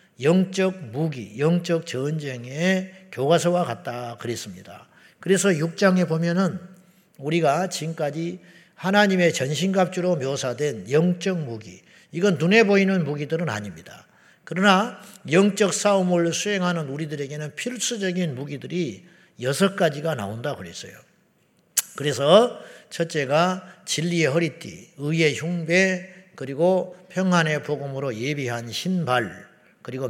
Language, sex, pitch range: Korean, male, 140-185 Hz